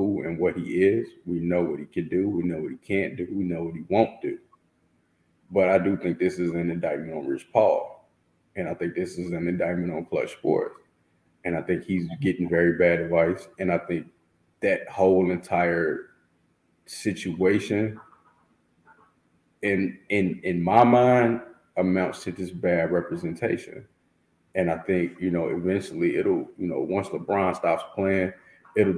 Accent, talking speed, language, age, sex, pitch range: American, 170 wpm, English, 30-49, male, 85-95 Hz